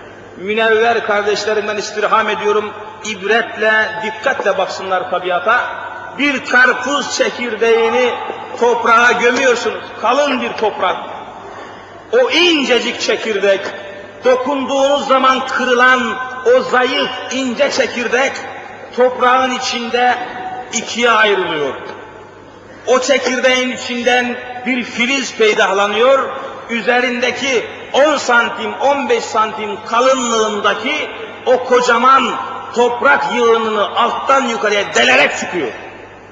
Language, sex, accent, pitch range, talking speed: Turkish, male, native, 220-265 Hz, 85 wpm